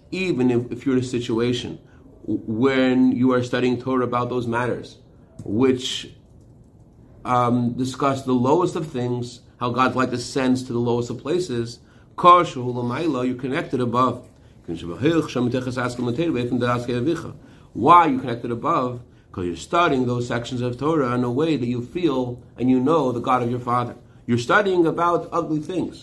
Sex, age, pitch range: male, 40-59, 120-145 Hz